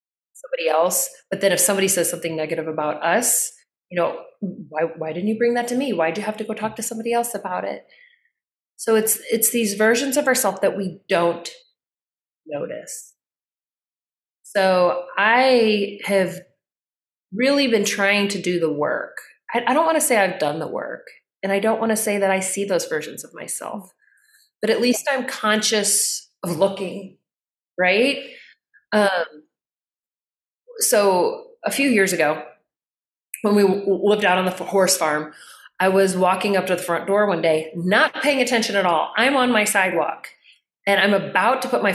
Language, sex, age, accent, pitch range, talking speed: English, female, 30-49, American, 185-240 Hz, 175 wpm